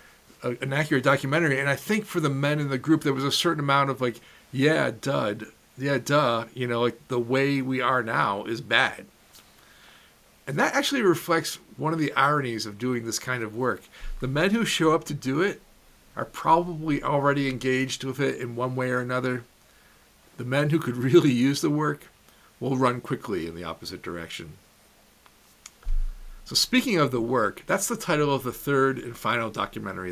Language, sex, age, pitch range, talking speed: English, male, 50-69, 120-150 Hz, 190 wpm